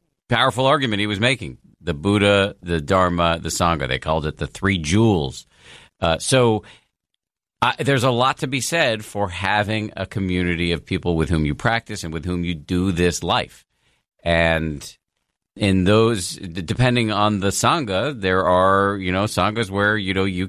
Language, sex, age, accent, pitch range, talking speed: English, male, 50-69, American, 80-105 Hz, 175 wpm